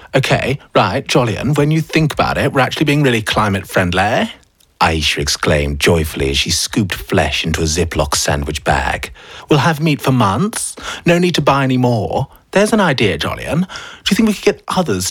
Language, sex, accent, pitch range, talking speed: English, male, British, 80-135 Hz, 185 wpm